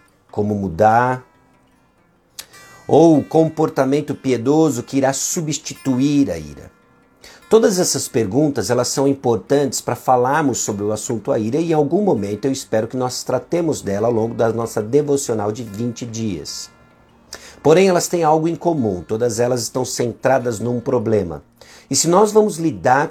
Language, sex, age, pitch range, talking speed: Portuguese, male, 50-69, 110-140 Hz, 150 wpm